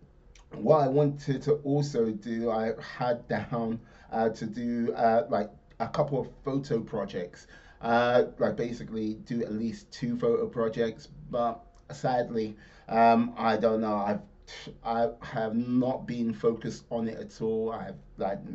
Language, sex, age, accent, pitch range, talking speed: English, male, 30-49, British, 110-125 Hz, 150 wpm